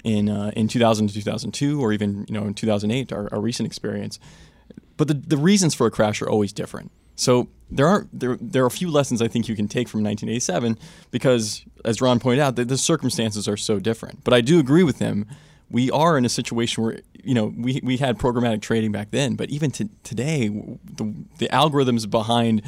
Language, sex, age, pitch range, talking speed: English, male, 20-39, 110-130 Hz, 215 wpm